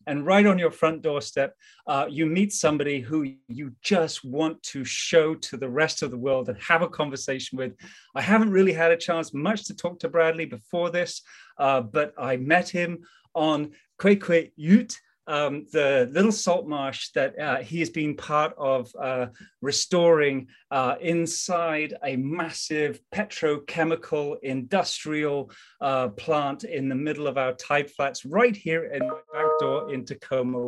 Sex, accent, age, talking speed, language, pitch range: male, British, 30-49, 170 wpm, English, 140-175 Hz